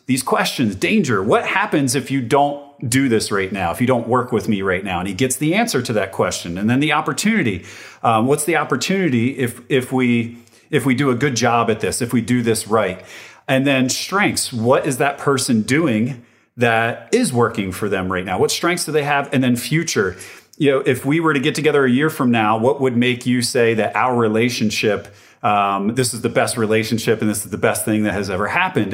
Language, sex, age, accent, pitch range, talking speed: English, male, 40-59, American, 120-165 Hz, 230 wpm